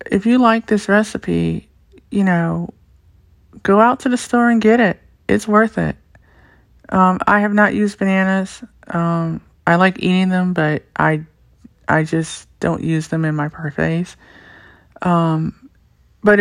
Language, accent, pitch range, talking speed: English, American, 170-205 Hz, 150 wpm